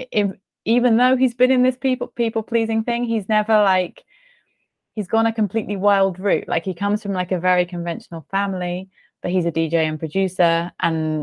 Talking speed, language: 190 wpm, English